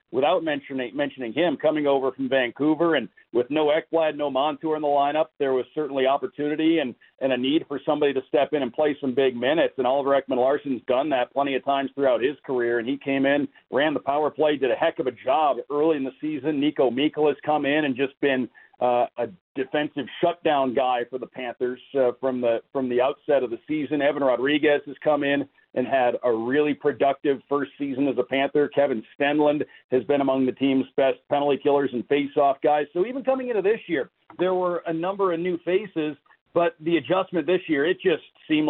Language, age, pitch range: English, 50-69, 130-155 Hz